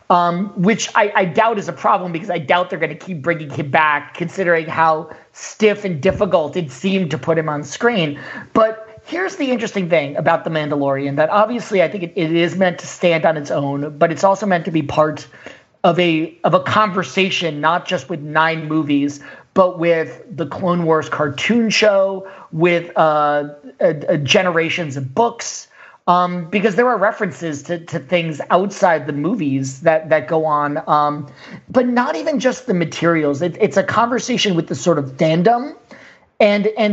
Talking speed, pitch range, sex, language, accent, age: 185 wpm, 155-200 Hz, male, English, American, 40-59